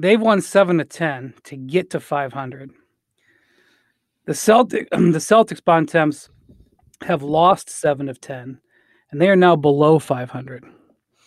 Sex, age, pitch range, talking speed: male, 30-49, 145-180 Hz, 135 wpm